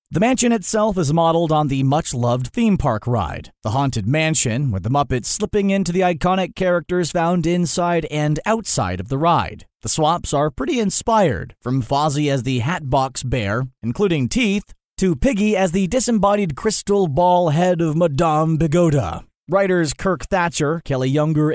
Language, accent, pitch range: English, American, 130-180 Hz